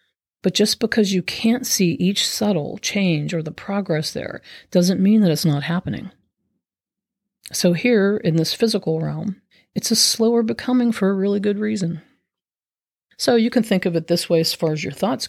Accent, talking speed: American, 185 wpm